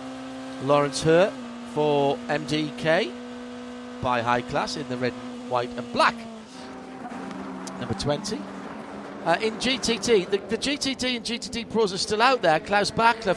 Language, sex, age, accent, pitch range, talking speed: English, male, 40-59, British, 140-200 Hz, 135 wpm